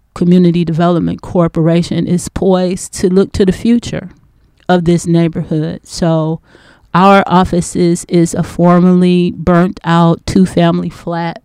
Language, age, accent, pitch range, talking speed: English, 30-49, American, 165-180 Hz, 125 wpm